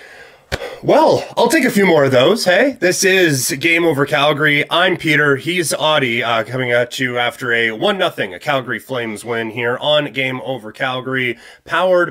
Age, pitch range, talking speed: 30-49, 125-160 Hz, 180 wpm